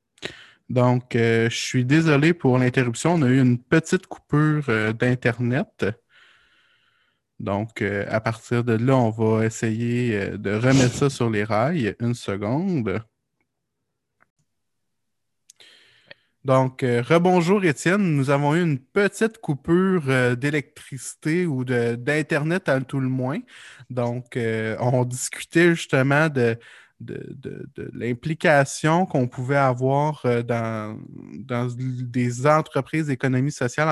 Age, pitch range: 20-39, 120-140 Hz